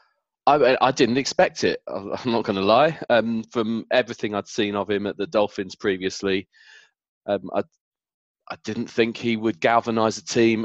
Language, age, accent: English, 20-39, British